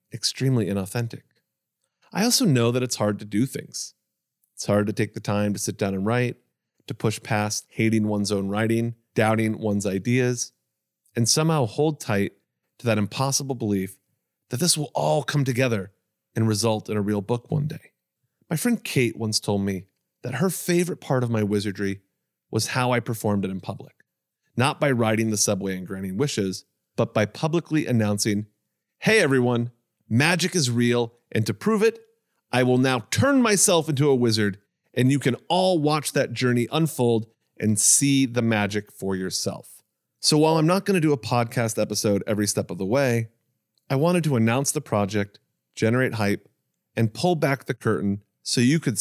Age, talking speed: 30-49, 180 wpm